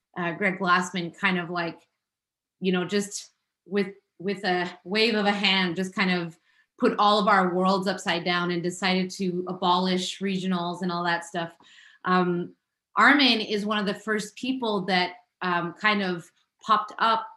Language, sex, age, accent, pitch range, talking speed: English, female, 20-39, American, 180-215 Hz, 170 wpm